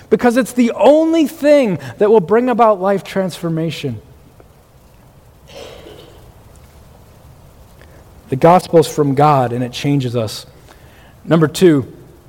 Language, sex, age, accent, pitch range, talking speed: English, male, 40-59, American, 160-205 Hz, 105 wpm